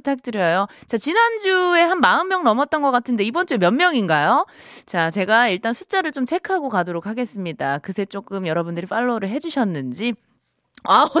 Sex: female